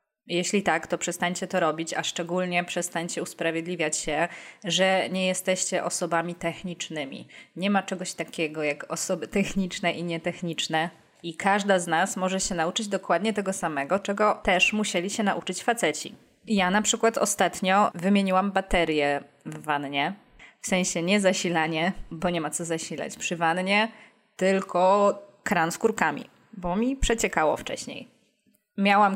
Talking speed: 140 wpm